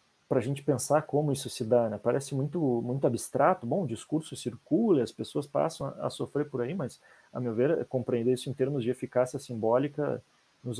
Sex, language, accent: male, Portuguese, Brazilian